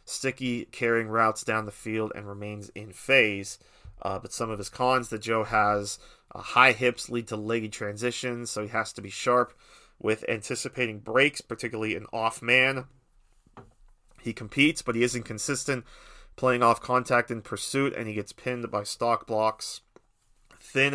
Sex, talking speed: male, 165 wpm